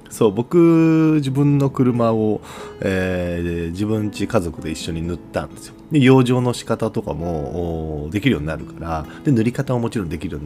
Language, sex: Japanese, male